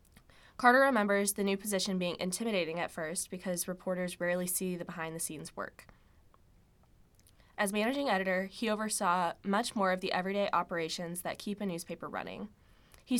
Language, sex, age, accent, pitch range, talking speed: English, female, 20-39, American, 175-205 Hz, 155 wpm